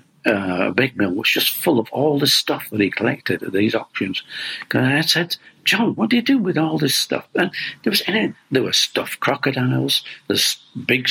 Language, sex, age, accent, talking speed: Danish, male, 60-79, British, 210 wpm